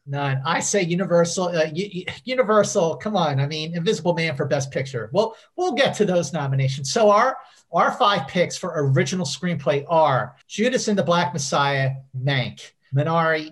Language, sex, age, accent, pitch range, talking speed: English, male, 50-69, American, 140-180 Hz, 170 wpm